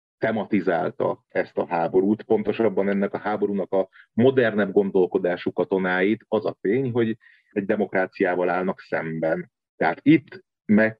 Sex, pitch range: male, 90-110 Hz